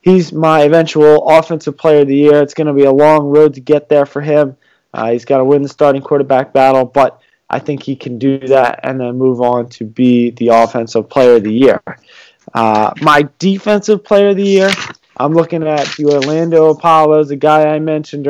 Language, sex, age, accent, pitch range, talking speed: English, male, 20-39, American, 135-155 Hz, 210 wpm